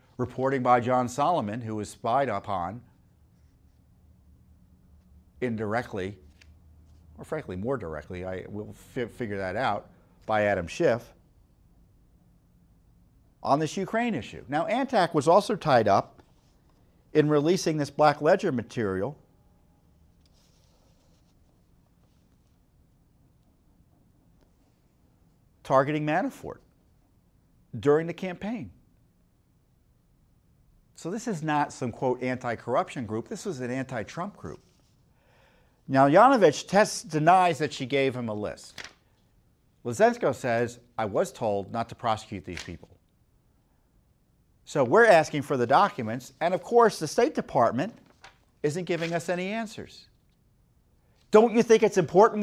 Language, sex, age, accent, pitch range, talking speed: English, male, 50-69, American, 105-180 Hz, 110 wpm